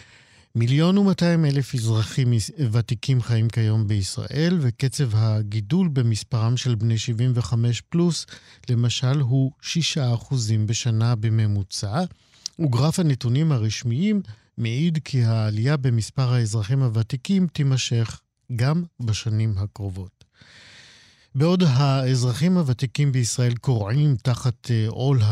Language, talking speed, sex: Hebrew, 100 wpm, male